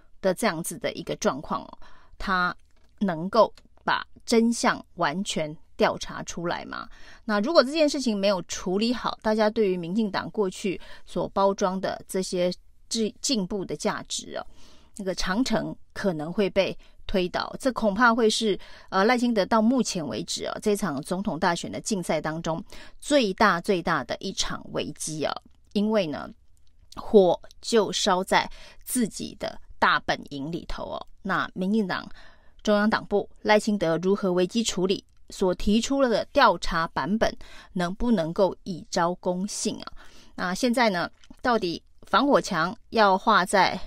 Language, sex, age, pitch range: Chinese, female, 30-49, 185-220 Hz